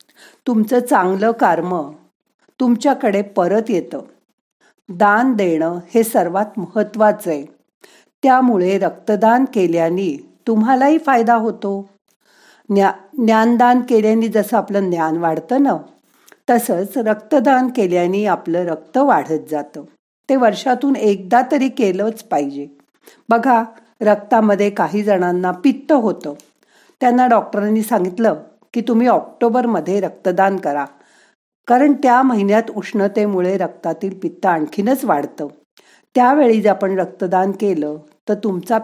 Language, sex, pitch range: Marathi, female, 185-245 Hz